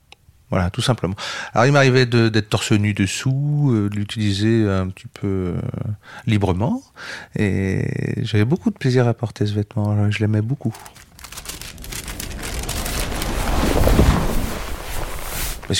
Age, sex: 40-59, male